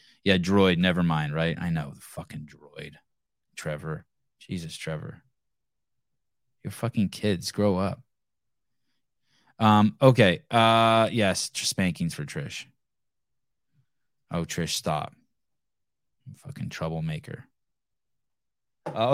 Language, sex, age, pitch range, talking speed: English, male, 20-39, 85-125 Hz, 100 wpm